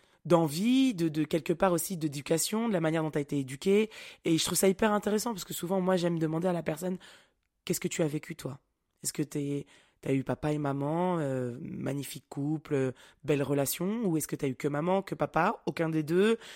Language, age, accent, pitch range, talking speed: French, 20-39, French, 145-185 Hz, 225 wpm